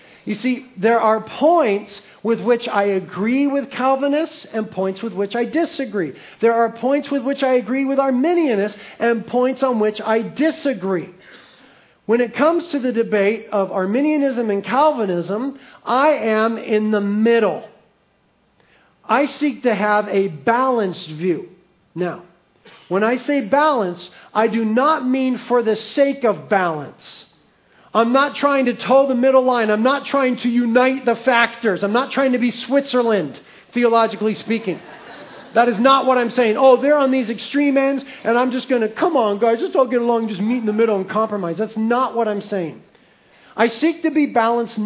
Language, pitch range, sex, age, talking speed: English, 210-265 Hz, male, 40-59, 175 wpm